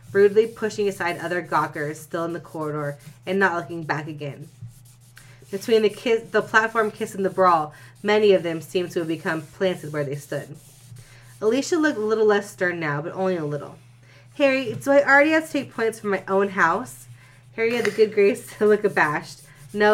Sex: female